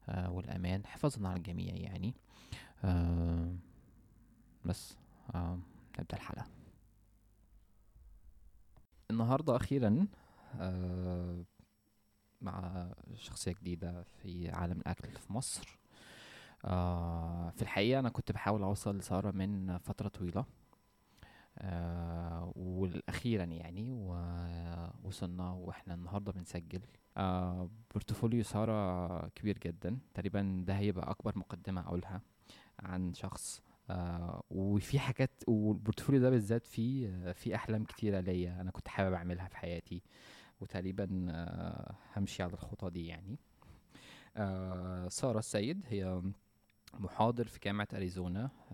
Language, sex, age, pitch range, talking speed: Arabic, male, 20-39, 90-105 Hz, 105 wpm